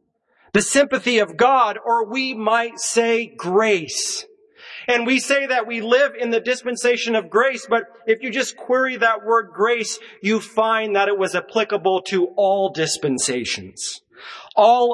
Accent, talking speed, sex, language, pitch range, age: American, 155 wpm, male, English, 180-220 Hz, 40-59